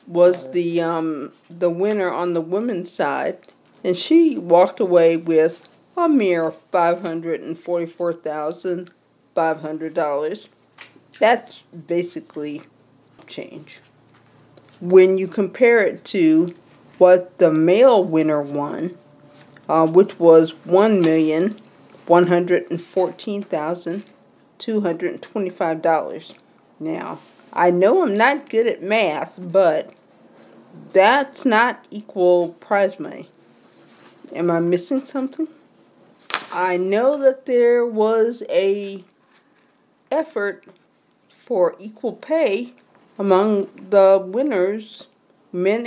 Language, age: English, 50-69